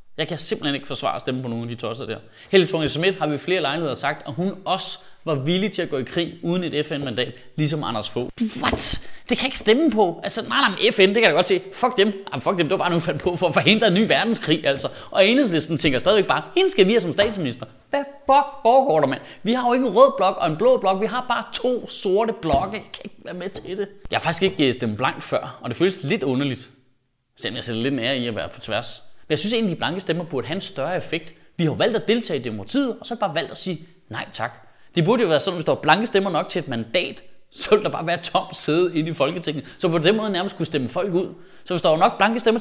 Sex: male